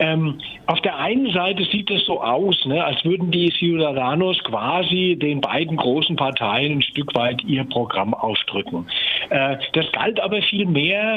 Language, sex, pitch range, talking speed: German, male, 145-185 Hz, 155 wpm